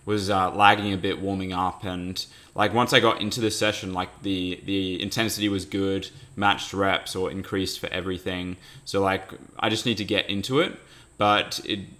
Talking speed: 190 wpm